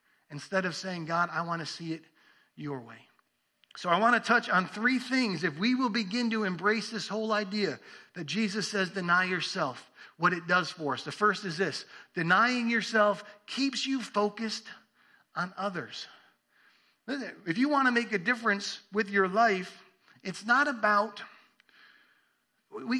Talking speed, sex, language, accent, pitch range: 165 wpm, male, English, American, 175-230 Hz